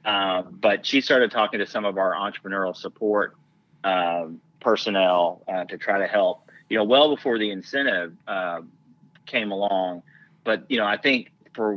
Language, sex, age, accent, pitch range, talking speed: English, male, 30-49, American, 95-115 Hz, 170 wpm